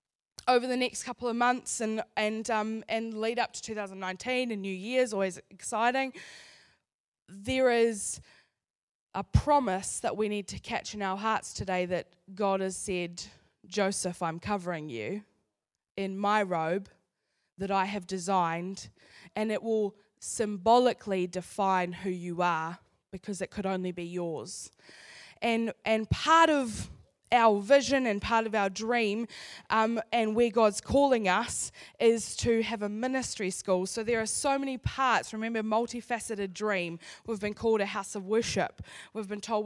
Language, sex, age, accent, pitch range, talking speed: English, female, 10-29, Australian, 195-230 Hz, 155 wpm